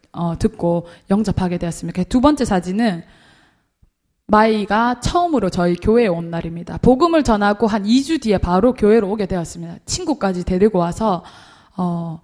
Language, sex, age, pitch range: Korean, female, 20-39, 185-260 Hz